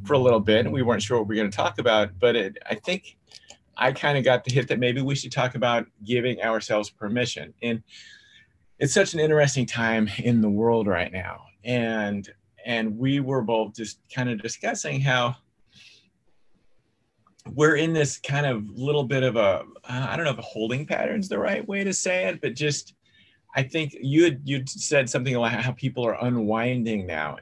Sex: male